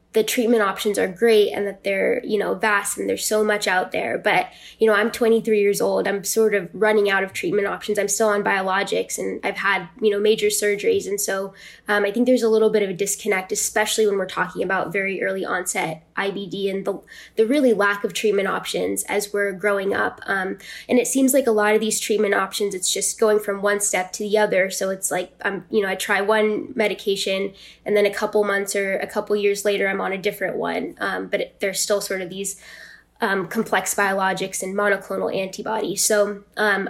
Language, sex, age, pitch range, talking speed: English, female, 10-29, 195-220 Hz, 220 wpm